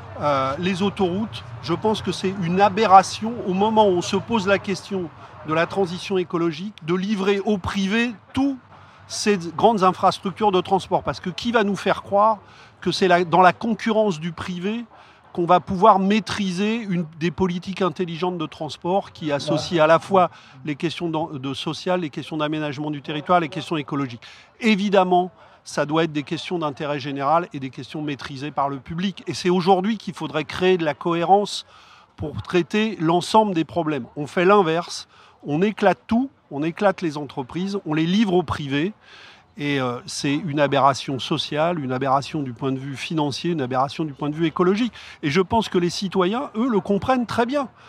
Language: French